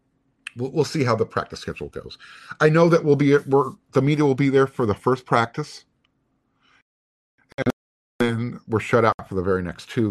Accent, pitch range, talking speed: American, 100-130 Hz, 190 wpm